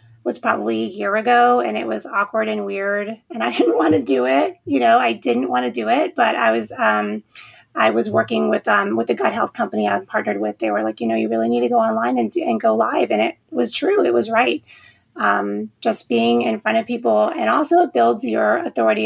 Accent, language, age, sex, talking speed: American, English, 30-49, female, 250 wpm